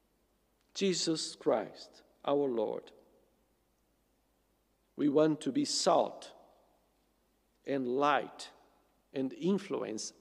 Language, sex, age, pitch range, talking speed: English, male, 50-69, 145-185 Hz, 75 wpm